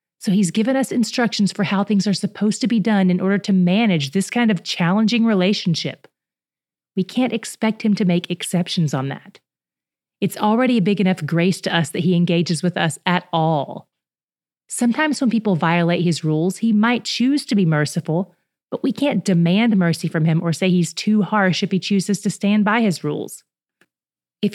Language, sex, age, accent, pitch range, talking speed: English, female, 30-49, American, 165-215 Hz, 195 wpm